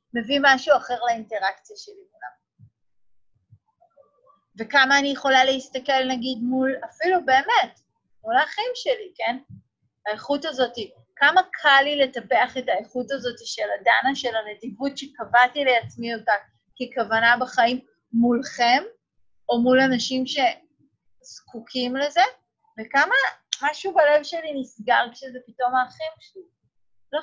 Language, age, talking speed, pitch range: Hebrew, 30-49, 115 wpm, 220-290 Hz